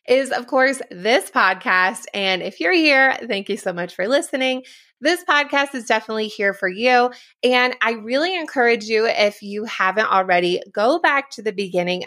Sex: female